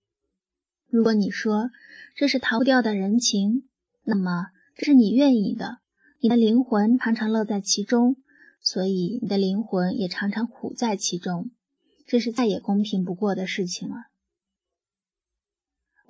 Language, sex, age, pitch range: Chinese, female, 20-39, 205-255 Hz